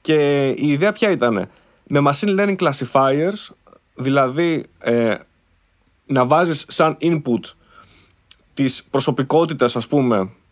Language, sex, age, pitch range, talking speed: Greek, male, 20-39, 140-195 Hz, 105 wpm